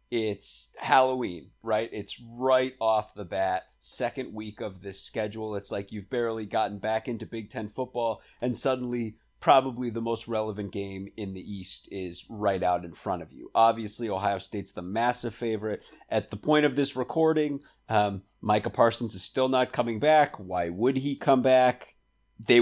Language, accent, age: English, American, 30-49